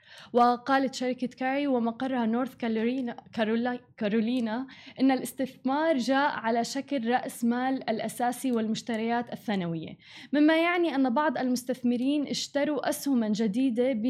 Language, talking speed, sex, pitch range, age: Arabic, 100 wpm, female, 230-270 Hz, 10-29